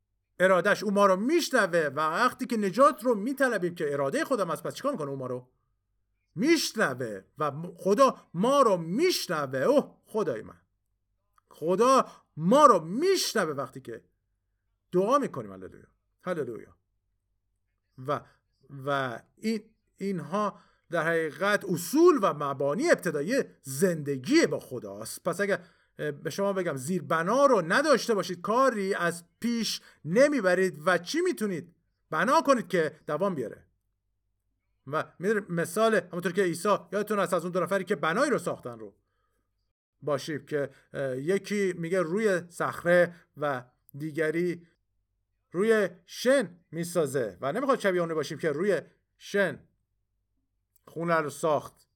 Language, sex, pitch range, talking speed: Persian, male, 125-200 Hz, 130 wpm